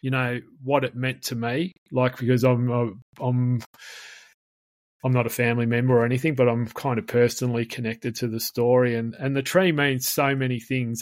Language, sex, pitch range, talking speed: English, male, 120-130 Hz, 190 wpm